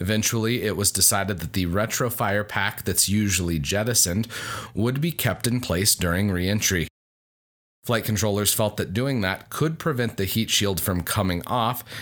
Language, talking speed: English, 160 wpm